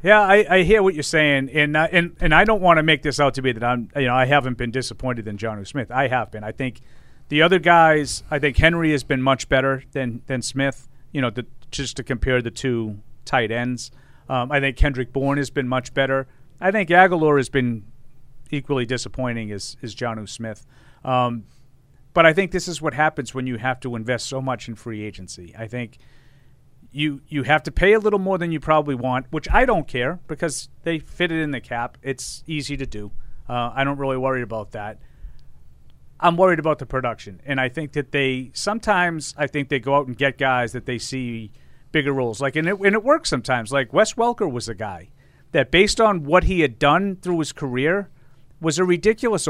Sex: male